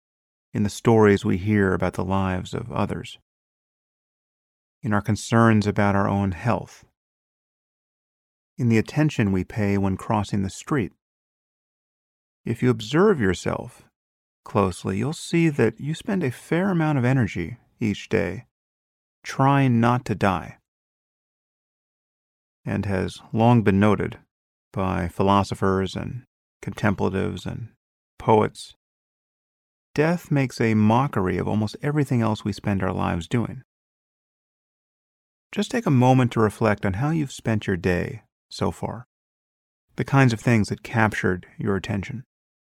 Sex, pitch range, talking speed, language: male, 95-120 Hz, 130 wpm, English